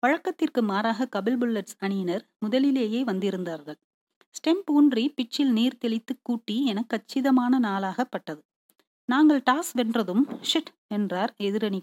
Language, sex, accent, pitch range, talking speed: Tamil, female, native, 195-260 Hz, 100 wpm